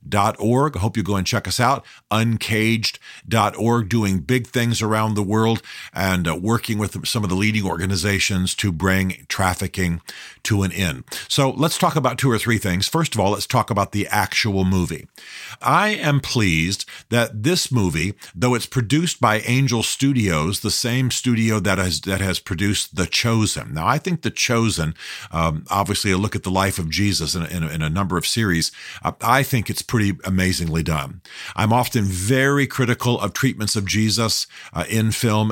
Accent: American